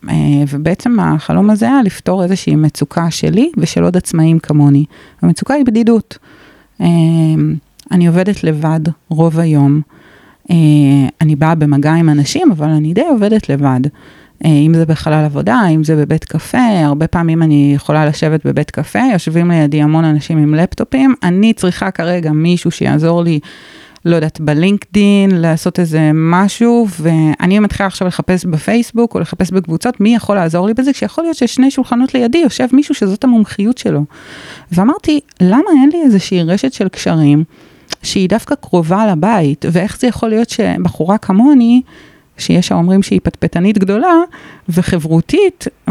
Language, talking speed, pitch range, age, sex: Hebrew, 150 wpm, 160-215 Hz, 30-49, female